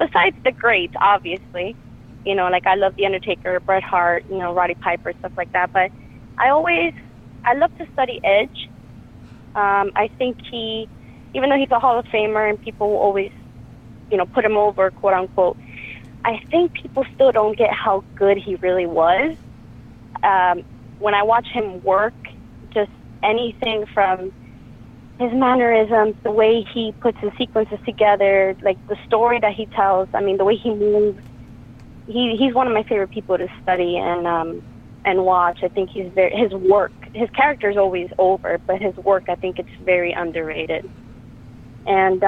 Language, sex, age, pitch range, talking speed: English, female, 20-39, 130-215 Hz, 175 wpm